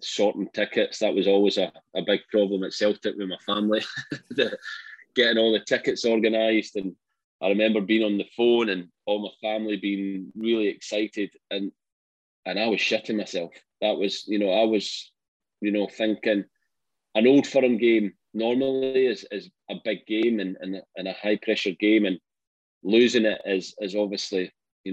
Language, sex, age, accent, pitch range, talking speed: English, male, 20-39, British, 100-115 Hz, 170 wpm